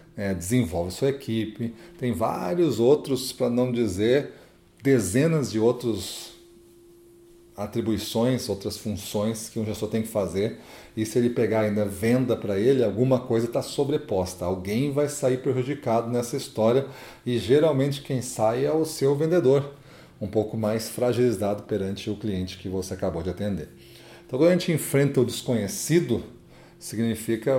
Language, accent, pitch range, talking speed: Portuguese, Brazilian, 110-140 Hz, 145 wpm